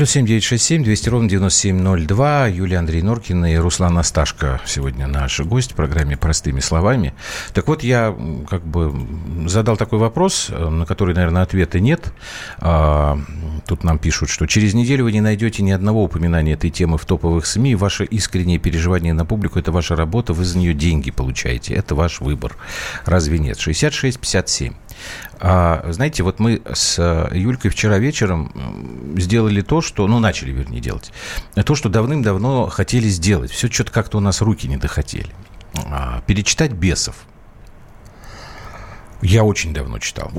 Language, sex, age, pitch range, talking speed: Russian, male, 50-69, 80-110 Hz, 150 wpm